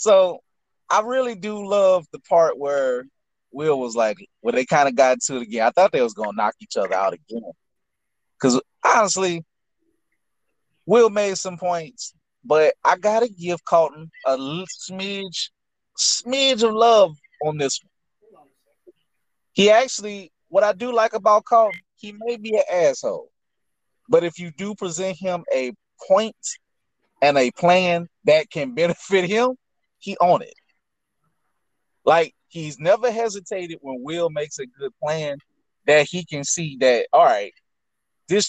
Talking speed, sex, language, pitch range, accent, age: 155 wpm, male, English, 165-235 Hz, American, 30-49